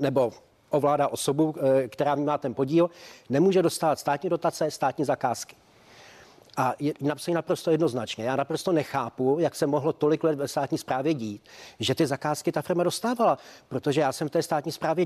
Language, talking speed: Czech, 165 wpm